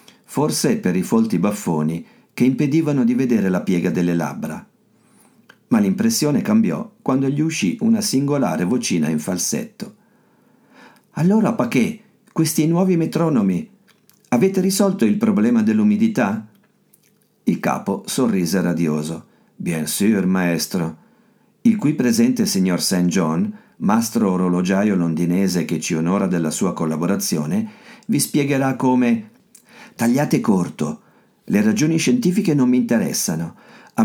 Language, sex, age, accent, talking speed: Italian, male, 50-69, native, 120 wpm